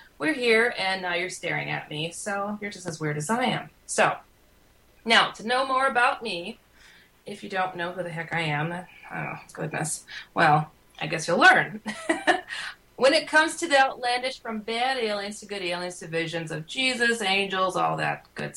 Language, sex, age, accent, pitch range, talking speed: English, female, 30-49, American, 170-240 Hz, 190 wpm